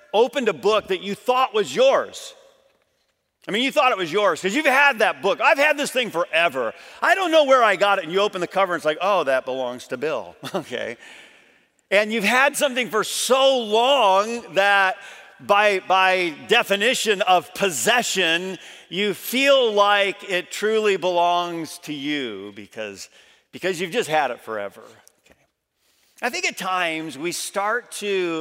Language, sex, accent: English, male, American